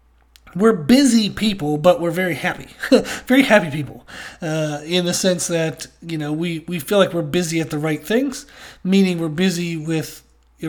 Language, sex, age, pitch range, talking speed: English, male, 30-49, 155-195 Hz, 180 wpm